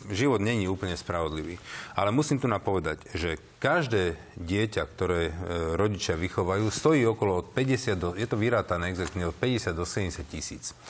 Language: Slovak